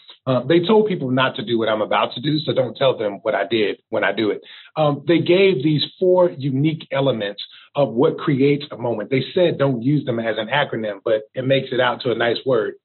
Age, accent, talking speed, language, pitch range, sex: 30-49, American, 245 wpm, English, 130-160 Hz, male